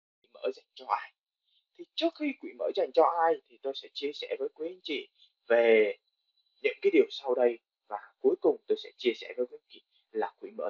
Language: Vietnamese